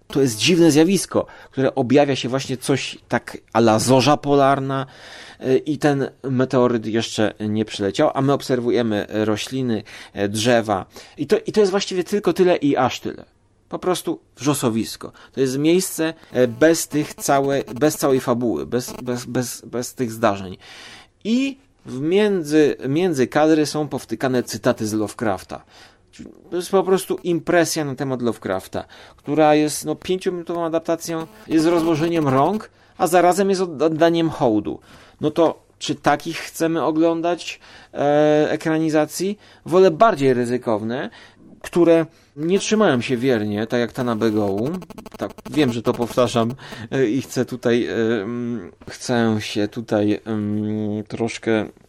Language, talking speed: Polish, 135 wpm